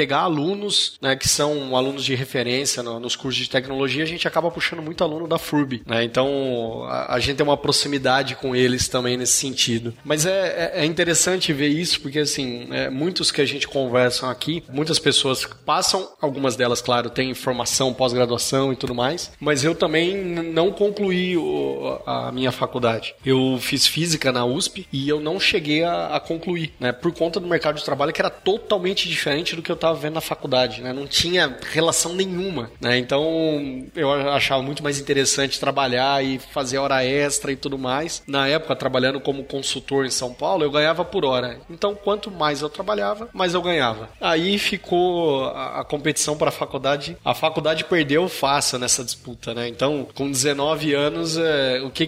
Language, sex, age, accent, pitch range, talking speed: Portuguese, male, 20-39, Brazilian, 130-160 Hz, 185 wpm